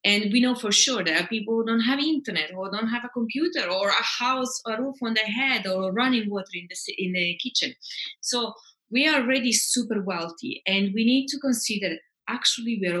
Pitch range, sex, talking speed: 185-240 Hz, female, 210 wpm